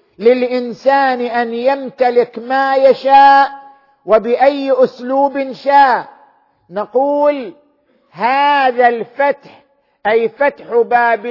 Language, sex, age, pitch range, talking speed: Arabic, male, 50-69, 210-270 Hz, 75 wpm